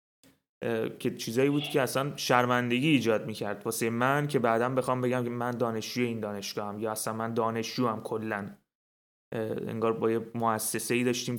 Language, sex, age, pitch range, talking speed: Persian, male, 30-49, 115-135 Hz, 155 wpm